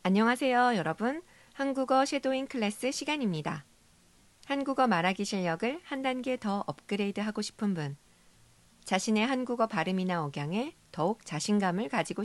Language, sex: Korean, female